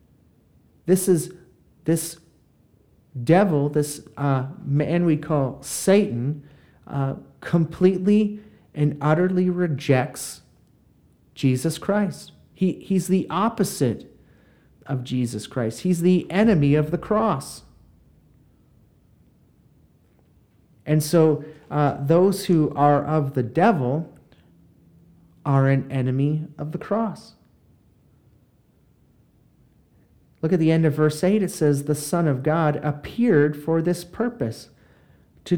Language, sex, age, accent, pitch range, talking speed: English, male, 40-59, American, 145-180 Hz, 105 wpm